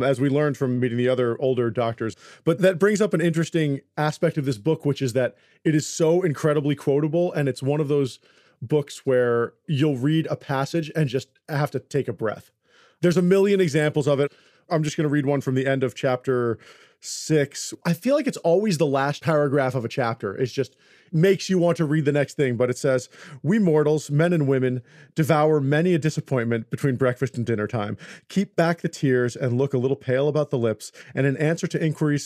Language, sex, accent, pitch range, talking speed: English, male, American, 130-165 Hz, 220 wpm